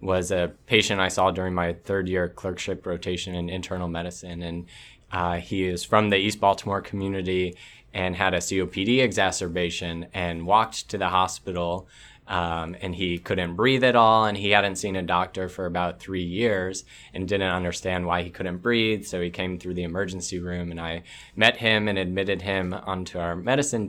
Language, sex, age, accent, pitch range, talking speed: English, male, 20-39, American, 90-105 Hz, 185 wpm